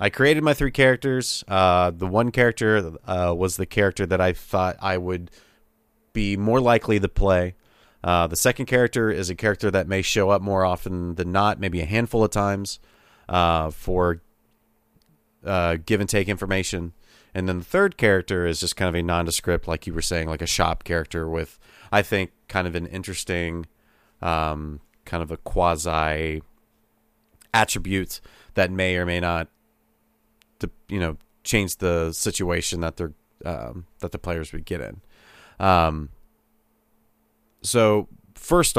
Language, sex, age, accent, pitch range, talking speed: English, male, 30-49, American, 85-105 Hz, 160 wpm